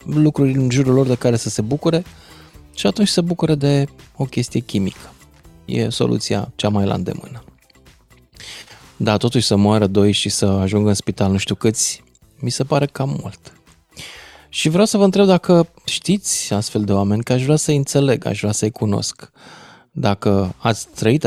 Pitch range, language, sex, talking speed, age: 100-135 Hz, Romanian, male, 180 wpm, 20-39